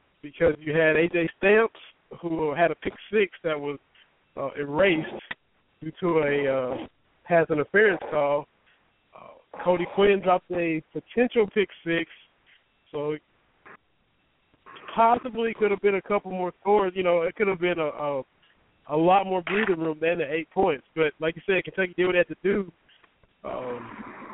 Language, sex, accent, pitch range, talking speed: English, male, American, 160-195 Hz, 165 wpm